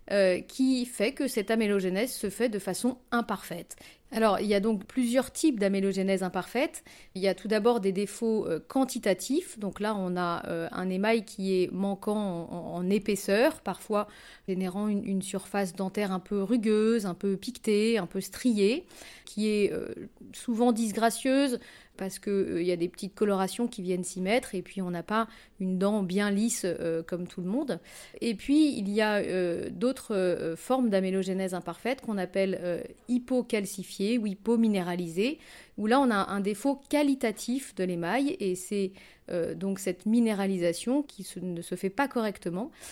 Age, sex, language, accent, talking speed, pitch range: 30-49, female, French, French, 180 wpm, 190-240 Hz